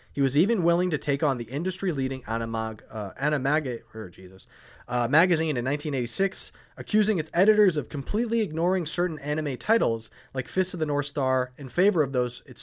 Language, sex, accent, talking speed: English, male, American, 180 wpm